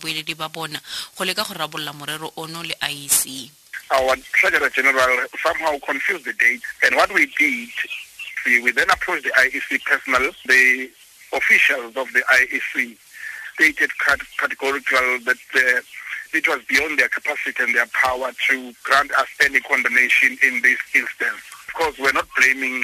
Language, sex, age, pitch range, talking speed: English, male, 50-69, 140-190 Hz, 125 wpm